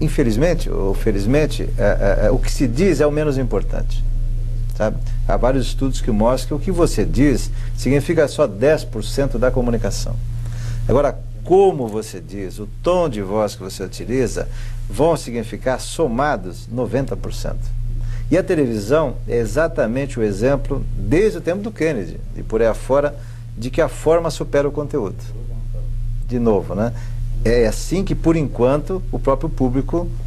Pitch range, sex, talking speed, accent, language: 115-145 Hz, male, 155 wpm, Brazilian, Portuguese